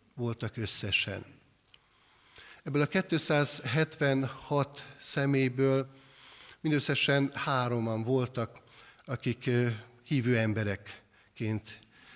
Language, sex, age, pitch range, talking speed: Hungarian, male, 60-79, 115-135 Hz, 60 wpm